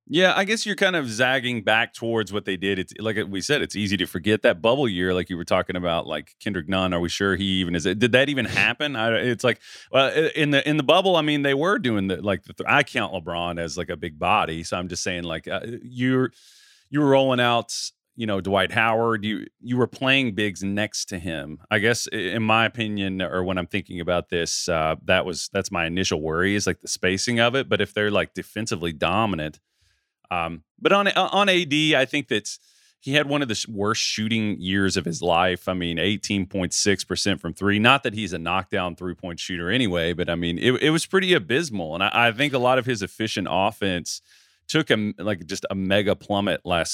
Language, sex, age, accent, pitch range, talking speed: English, male, 30-49, American, 90-125 Hz, 230 wpm